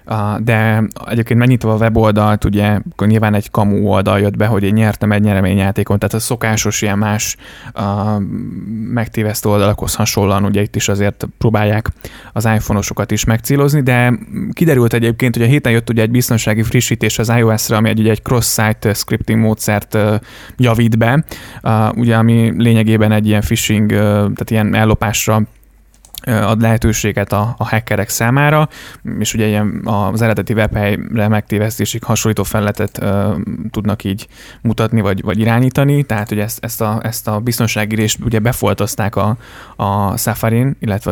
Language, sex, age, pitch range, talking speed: Hungarian, male, 20-39, 105-115 Hz, 155 wpm